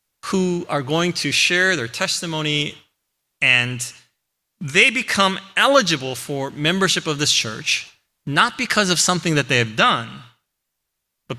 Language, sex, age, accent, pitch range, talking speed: English, male, 30-49, American, 120-165 Hz, 130 wpm